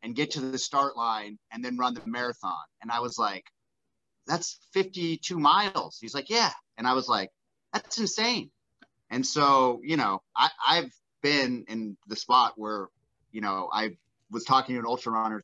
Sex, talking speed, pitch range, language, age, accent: male, 180 wpm, 110-135 Hz, English, 30-49, American